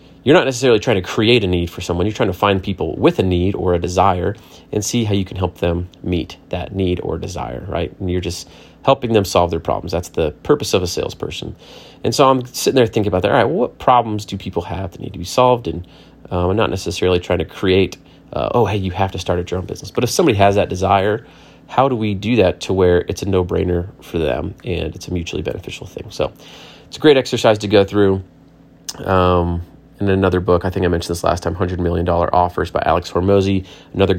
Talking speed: 240 wpm